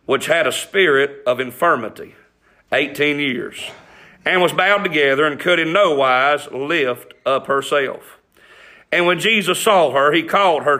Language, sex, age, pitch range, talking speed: English, male, 40-59, 165-215 Hz, 155 wpm